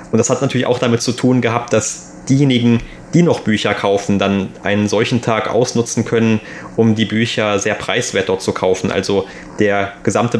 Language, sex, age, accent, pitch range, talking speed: German, male, 20-39, German, 100-115 Hz, 185 wpm